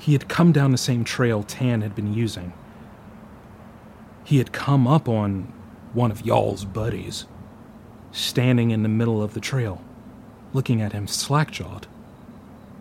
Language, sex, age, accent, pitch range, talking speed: English, male, 30-49, American, 105-135 Hz, 145 wpm